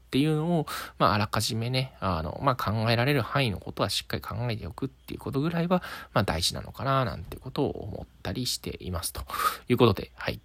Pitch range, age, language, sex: 95-130 Hz, 20-39, Japanese, male